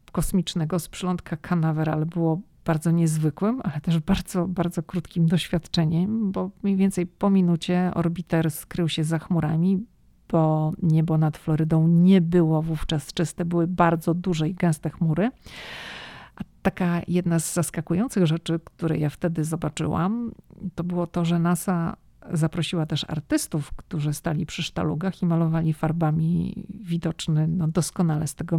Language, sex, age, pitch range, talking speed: Polish, female, 50-69, 160-185 Hz, 140 wpm